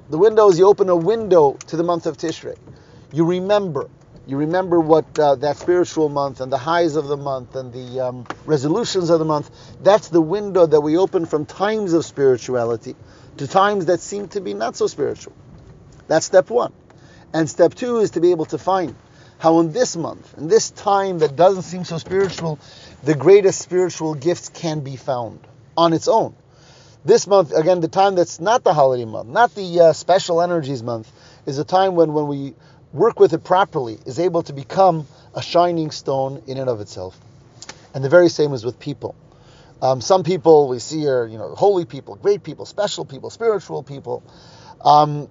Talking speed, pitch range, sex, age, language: 195 wpm, 135-185 Hz, male, 40-59, English